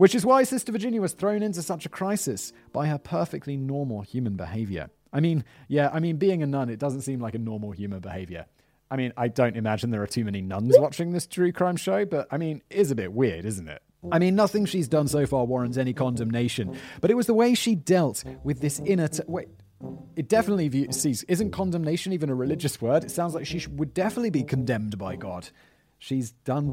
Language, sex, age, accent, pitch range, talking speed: English, male, 30-49, British, 120-185 Hz, 230 wpm